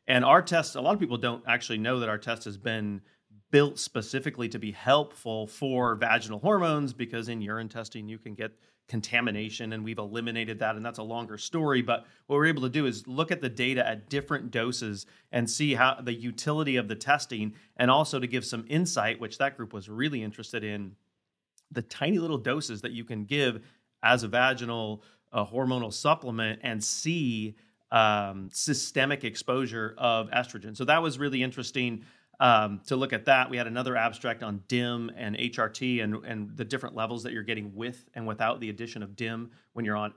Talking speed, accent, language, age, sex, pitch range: 195 wpm, American, English, 30-49, male, 110-130 Hz